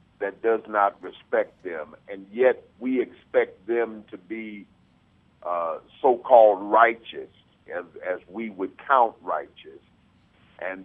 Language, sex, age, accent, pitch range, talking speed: English, male, 50-69, American, 100-130 Hz, 120 wpm